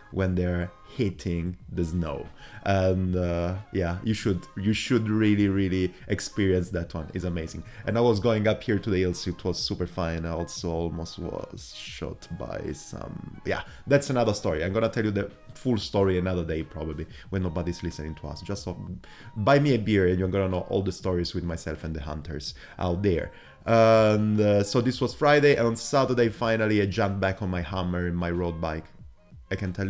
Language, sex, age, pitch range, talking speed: English, male, 30-49, 85-105 Hz, 200 wpm